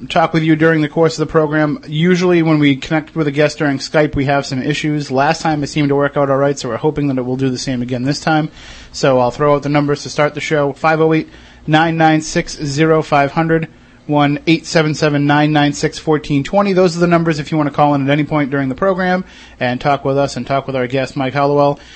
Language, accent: English, American